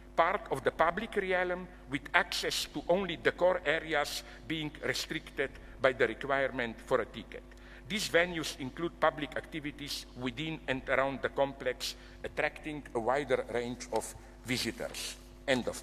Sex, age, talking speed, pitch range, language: male, 50-69, 145 wpm, 130-195 Hz, English